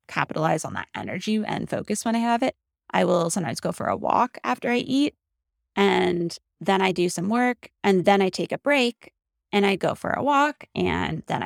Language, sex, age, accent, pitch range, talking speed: English, female, 20-39, American, 160-205 Hz, 210 wpm